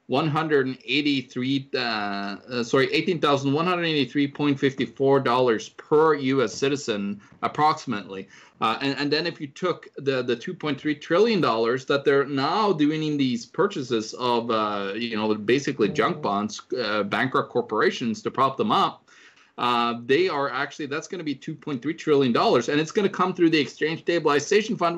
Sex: male